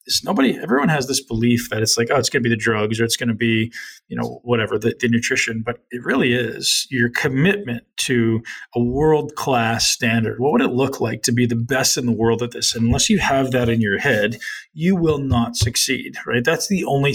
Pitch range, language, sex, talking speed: 115-130 Hz, English, male, 225 wpm